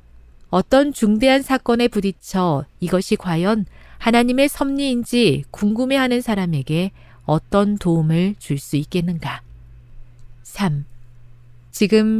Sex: female